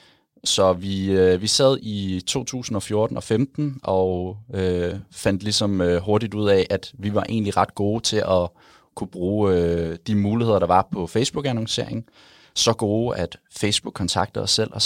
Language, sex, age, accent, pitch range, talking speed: Danish, male, 30-49, native, 95-115 Hz, 165 wpm